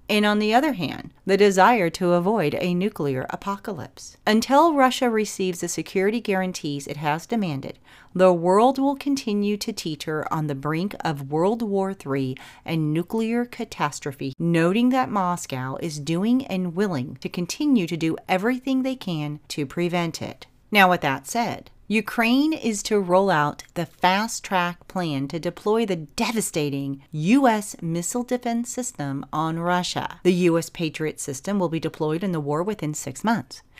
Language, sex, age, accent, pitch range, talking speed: English, female, 40-59, American, 155-220 Hz, 160 wpm